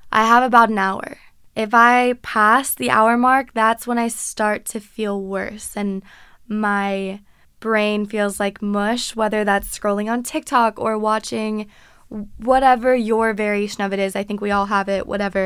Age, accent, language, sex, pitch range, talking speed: 20-39, American, English, female, 210-250 Hz, 170 wpm